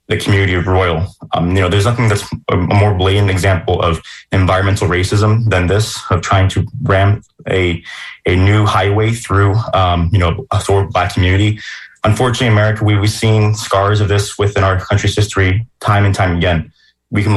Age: 20-39